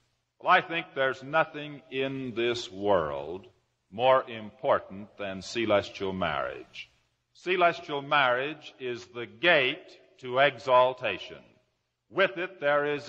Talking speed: 110 wpm